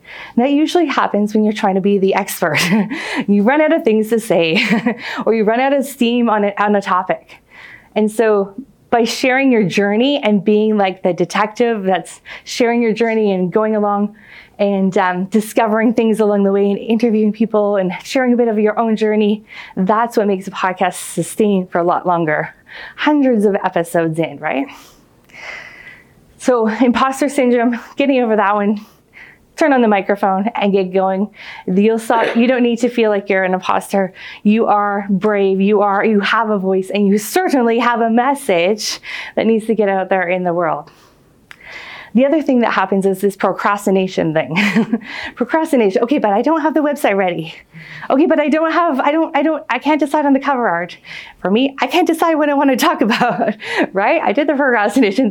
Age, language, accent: 20-39, English, American